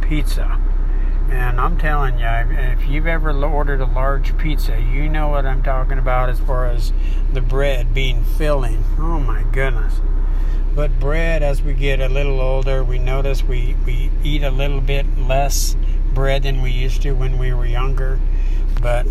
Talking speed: 175 wpm